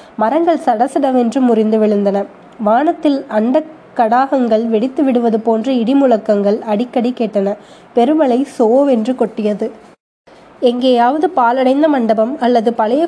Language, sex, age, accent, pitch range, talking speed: Tamil, female, 20-39, native, 220-265 Hz, 95 wpm